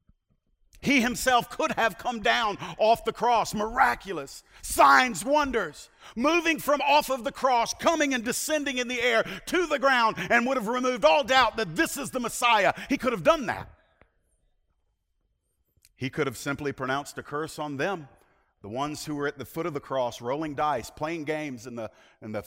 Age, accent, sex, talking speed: 50-69, American, male, 185 wpm